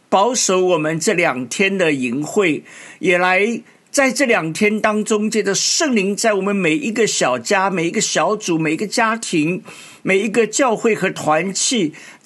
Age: 50-69